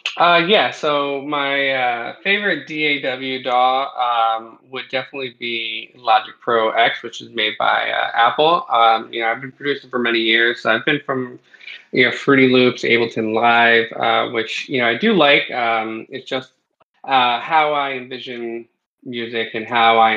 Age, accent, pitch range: 20-39, American, 115-135 Hz